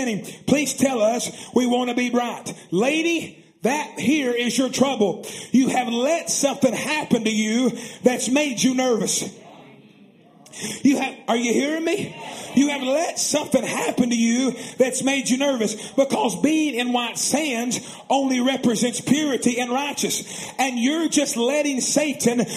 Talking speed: 155 wpm